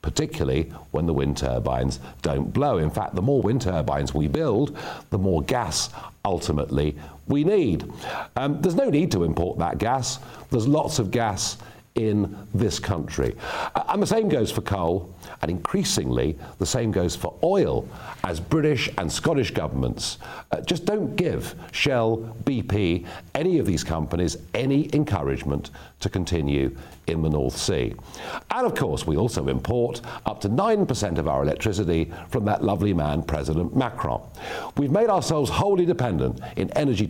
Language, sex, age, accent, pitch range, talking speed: English, male, 50-69, British, 75-120 Hz, 155 wpm